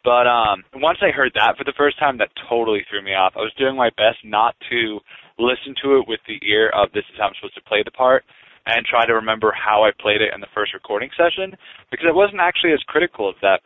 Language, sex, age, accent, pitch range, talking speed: English, male, 20-39, American, 110-135 Hz, 260 wpm